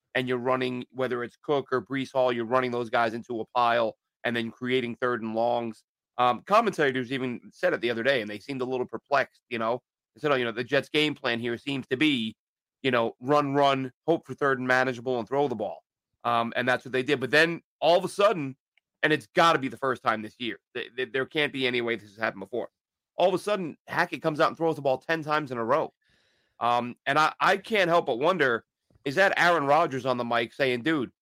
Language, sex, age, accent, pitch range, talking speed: English, male, 30-49, American, 125-160 Hz, 245 wpm